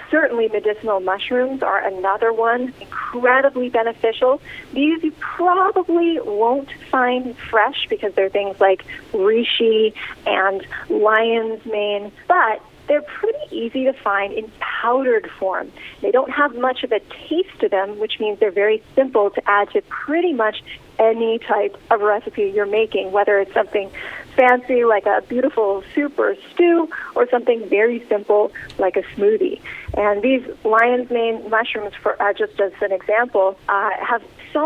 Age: 30-49